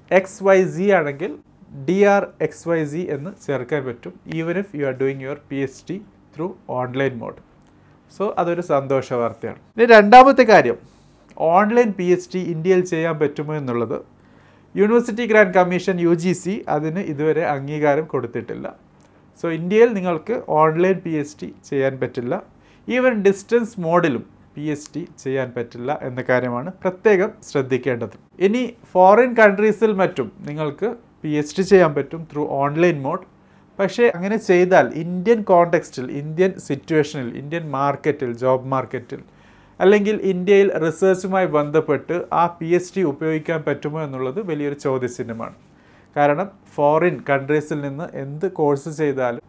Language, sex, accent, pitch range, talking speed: Malayalam, male, native, 140-185 Hz, 130 wpm